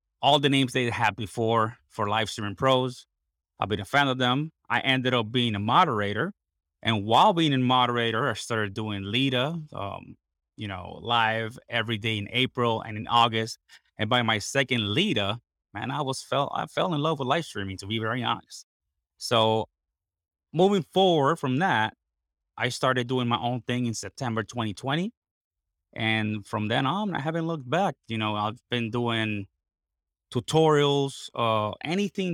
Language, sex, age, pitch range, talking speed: English, male, 30-49, 105-130 Hz, 165 wpm